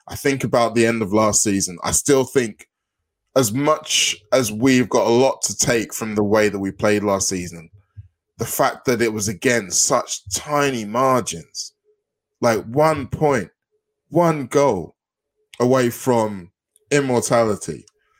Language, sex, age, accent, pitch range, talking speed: English, male, 10-29, British, 105-140 Hz, 150 wpm